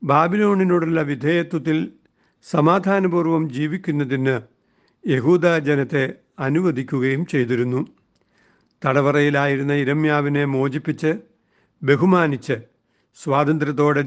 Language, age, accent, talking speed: Malayalam, 60-79, native, 55 wpm